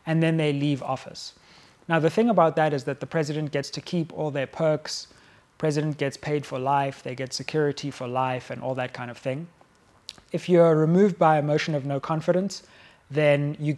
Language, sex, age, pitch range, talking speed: English, male, 20-39, 135-160 Hz, 210 wpm